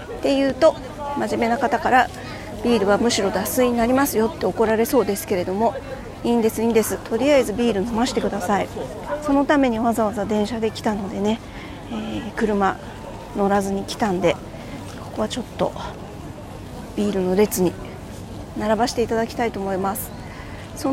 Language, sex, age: Japanese, female, 40-59